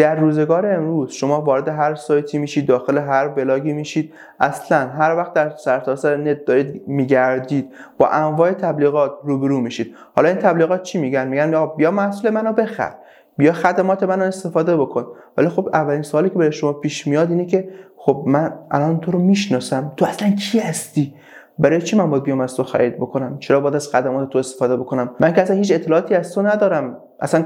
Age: 20-39